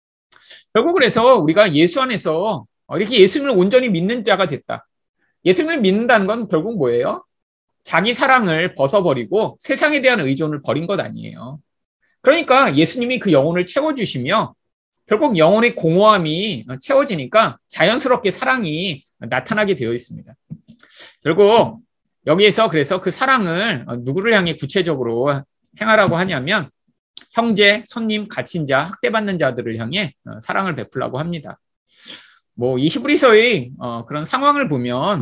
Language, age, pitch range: Korean, 30-49, 145-225 Hz